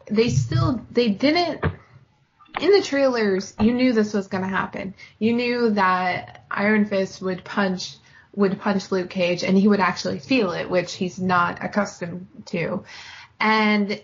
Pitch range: 180-210 Hz